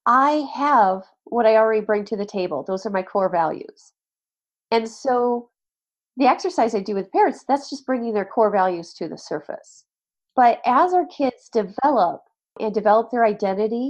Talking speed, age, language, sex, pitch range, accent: 175 wpm, 40-59, English, female, 205-260 Hz, American